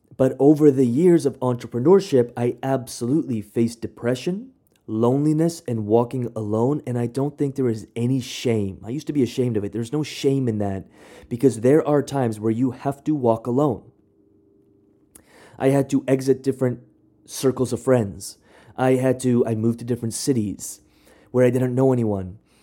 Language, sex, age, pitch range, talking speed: English, male, 30-49, 110-140 Hz, 170 wpm